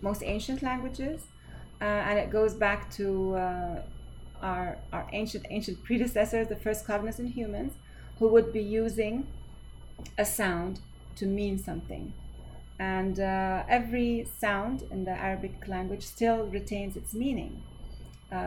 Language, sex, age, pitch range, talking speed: English, female, 30-49, 185-215 Hz, 135 wpm